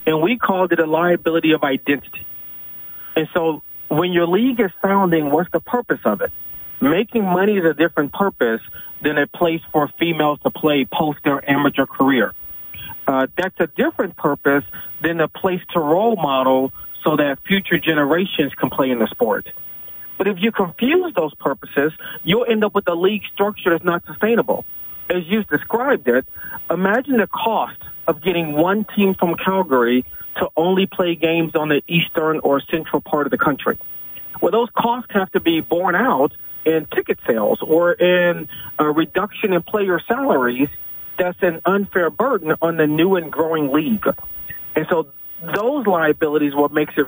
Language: English